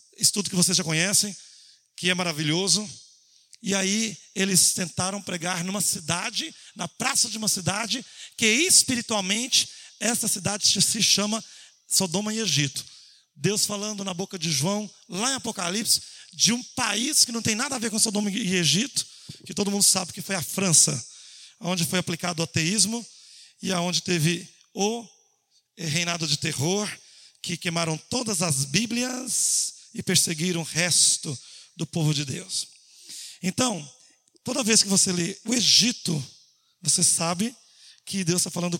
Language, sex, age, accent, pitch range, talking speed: Portuguese, male, 40-59, Brazilian, 170-215 Hz, 150 wpm